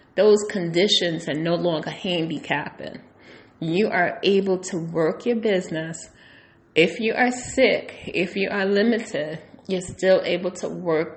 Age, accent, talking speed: 30-49, American, 140 wpm